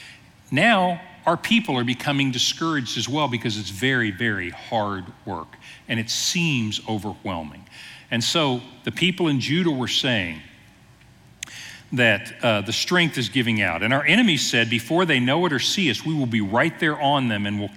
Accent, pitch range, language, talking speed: American, 115-160 Hz, English, 180 wpm